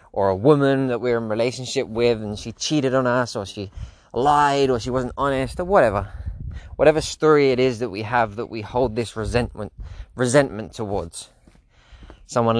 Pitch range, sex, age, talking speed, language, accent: 100-125 Hz, male, 20-39, 175 wpm, English, British